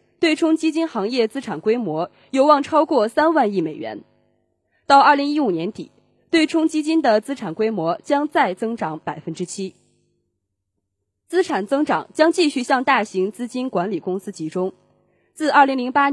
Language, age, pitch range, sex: Chinese, 20-39, 185-285 Hz, female